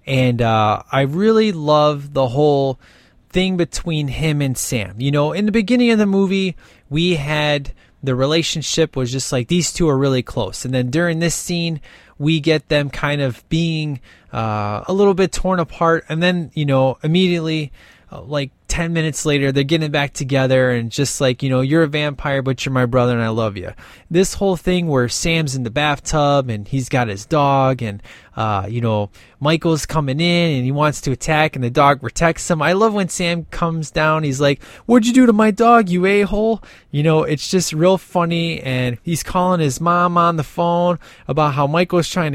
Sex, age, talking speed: male, 20-39, 200 wpm